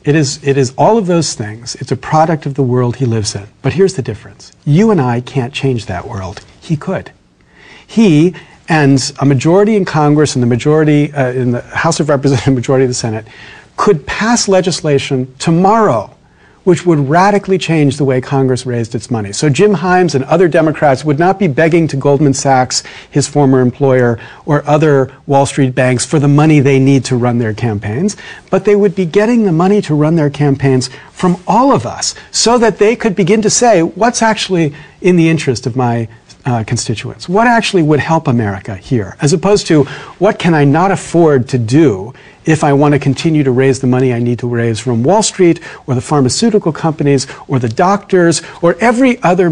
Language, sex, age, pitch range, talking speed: English, male, 40-59, 130-180 Hz, 205 wpm